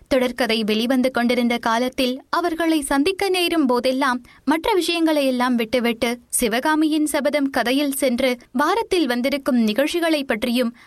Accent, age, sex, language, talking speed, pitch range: native, 20-39, female, Tamil, 105 wpm, 240-305 Hz